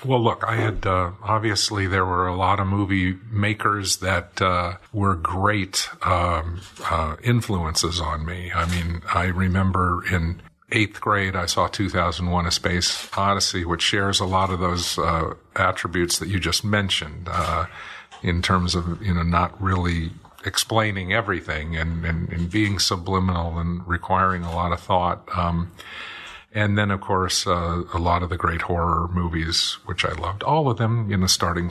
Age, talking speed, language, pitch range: 50-69, 170 wpm, English, 85-100 Hz